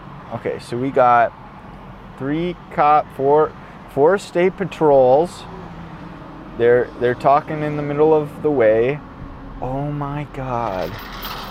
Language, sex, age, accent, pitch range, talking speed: English, male, 20-39, American, 120-175 Hz, 115 wpm